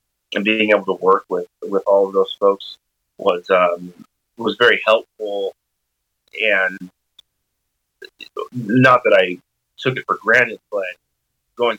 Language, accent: English, American